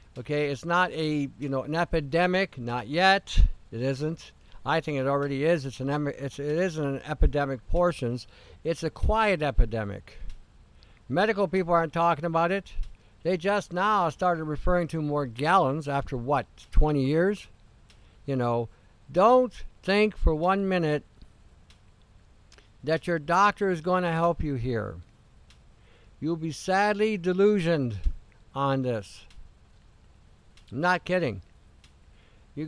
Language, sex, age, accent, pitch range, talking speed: English, male, 60-79, American, 125-180 Hz, 130 wpm